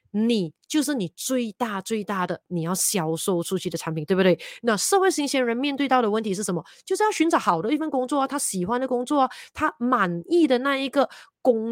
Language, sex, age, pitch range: Chinese, female, 30-49, 185-260 Hz